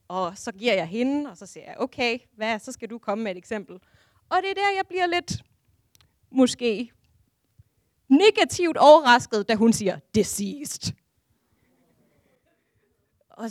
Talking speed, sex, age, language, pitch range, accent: 150 wpm, female, 30-49, Danish, 200-270 Hz, native